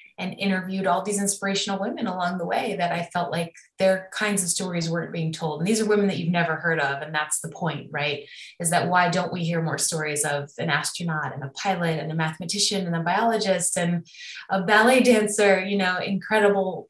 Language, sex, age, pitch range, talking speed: English, female, 20-39, 165-200 Hz, 215 wpm